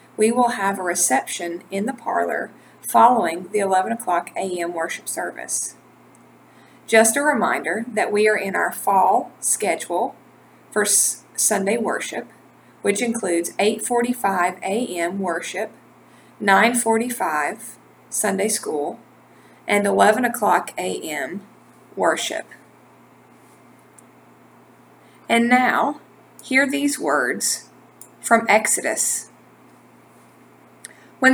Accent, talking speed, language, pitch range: American, 95 wpm, English, 195-245 Hz